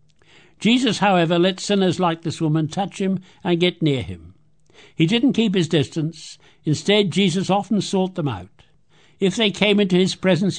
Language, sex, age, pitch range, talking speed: English, male, 60-79, 145-190 Hz, 170 wpm